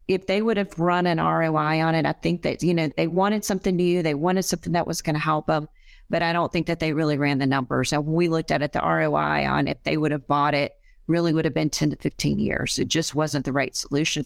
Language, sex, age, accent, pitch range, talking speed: English, female, 40-59, American, 155-180 Hz, 275 wpm